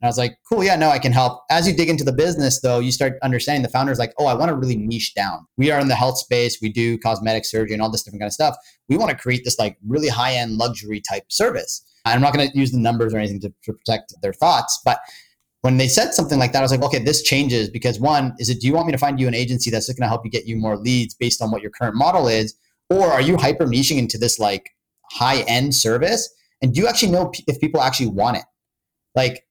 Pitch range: 115-145 Hz